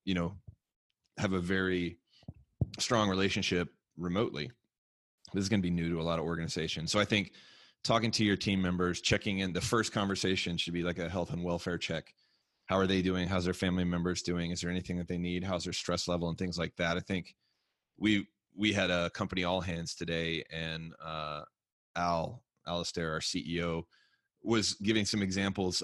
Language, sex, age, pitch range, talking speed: English, male, 30-49, 85-95 Hz, 195 wpm